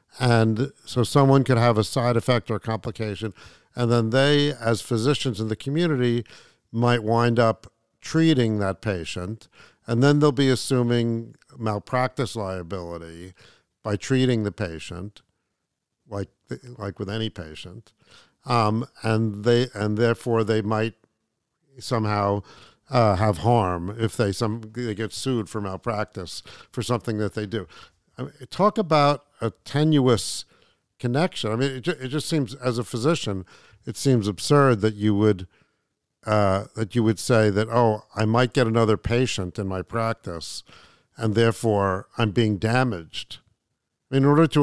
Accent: American